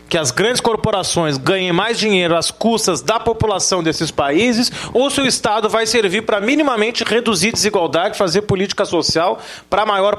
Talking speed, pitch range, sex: 170 wpm, 160-220 Hz, male